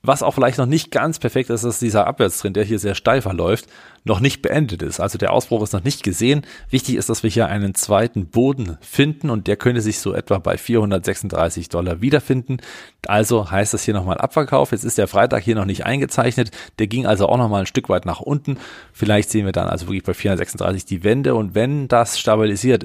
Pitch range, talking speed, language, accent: 95-115 Hz, 220 wpm, German, German